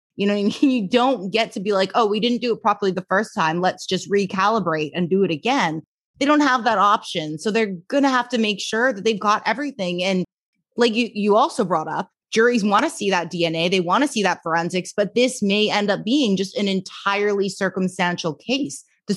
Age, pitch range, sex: 20-39, 170-210 Hz, female